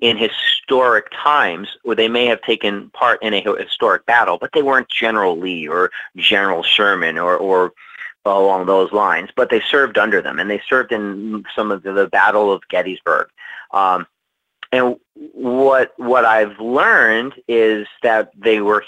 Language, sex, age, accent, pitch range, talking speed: English, male, 40-59, American, 100-135 Hz, 165 wpm